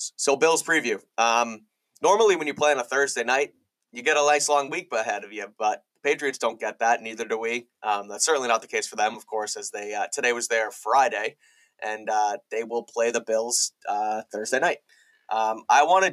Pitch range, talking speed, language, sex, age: 110-130 Hz, 225 wpm, English, male, 20-39